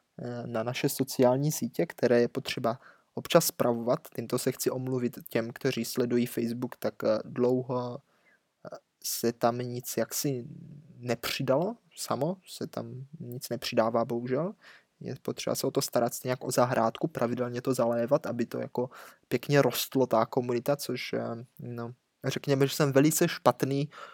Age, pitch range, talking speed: 20-39, 120-140 Hz, 135 wpm